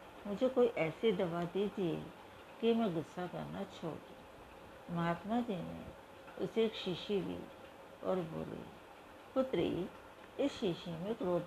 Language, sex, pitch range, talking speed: Hindi, female, 175-225 Hz, 125 wpm